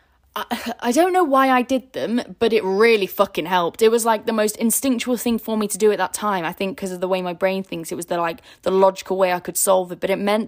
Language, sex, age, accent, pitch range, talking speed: English, female, 10-29, British, 185-235 Hz, 285 wpm